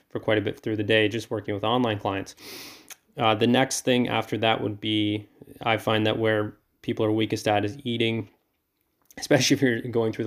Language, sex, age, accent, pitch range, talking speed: English, male, 20-39, American, 105-115 Hz, 205 wpm